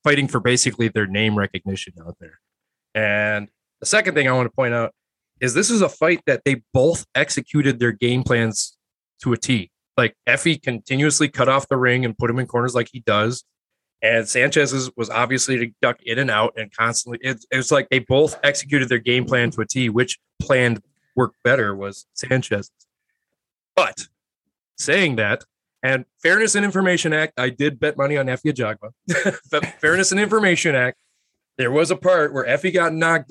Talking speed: 185 wpm